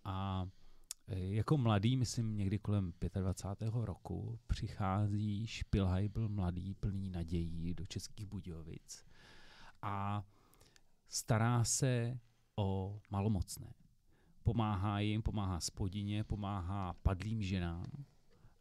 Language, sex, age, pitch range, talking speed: Czech, male, 30-49, 95-115 Hz, 90 wpm